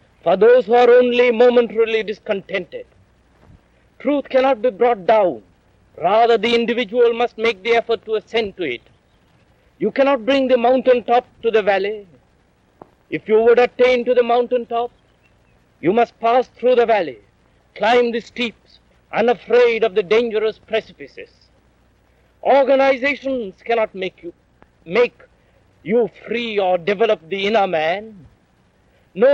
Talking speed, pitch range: 135 wpm, 205-245 Hz